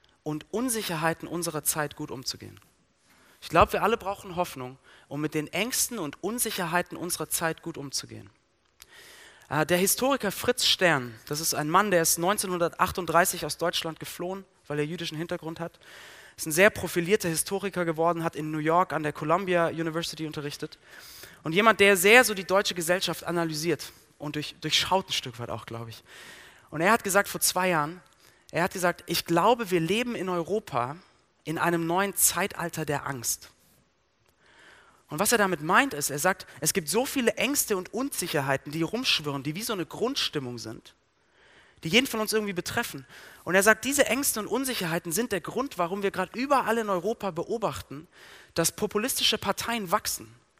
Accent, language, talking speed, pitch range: German, German, 175 wpm, 155-200 Hz